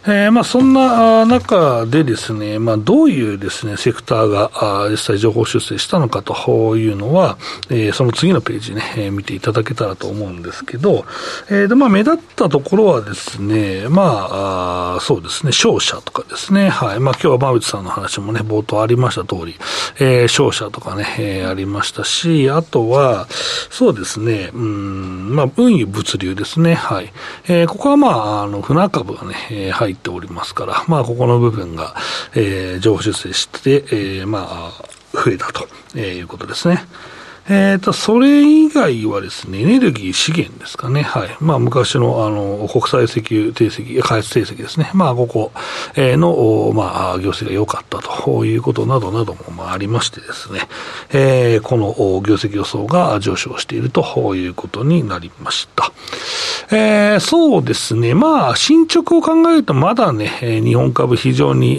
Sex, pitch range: male, 100-165 Hz